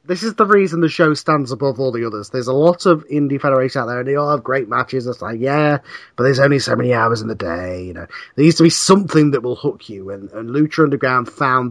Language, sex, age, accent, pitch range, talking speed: English, male, 30-49, British, 125-155 Hz, 270 wpm